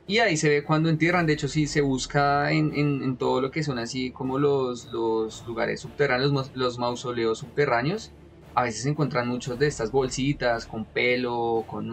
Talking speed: 200 wpm